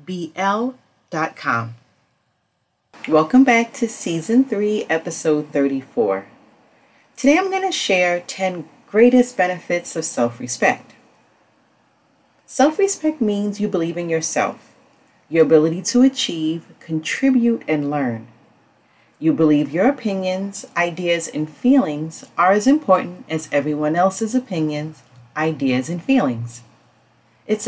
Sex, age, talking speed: female, 40-59, 105 wpm